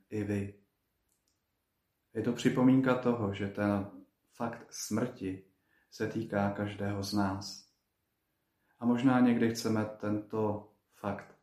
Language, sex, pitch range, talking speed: Slovak, male, 100-110 Hz, 110 wpm